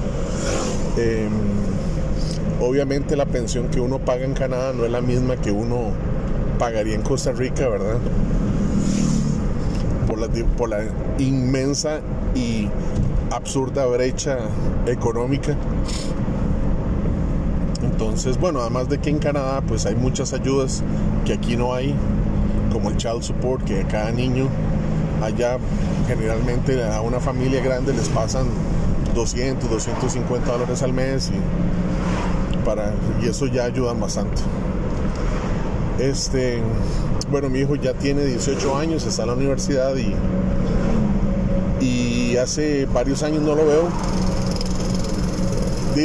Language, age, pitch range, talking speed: Spanish, 30-49, 110-145 Hz, 120 wpm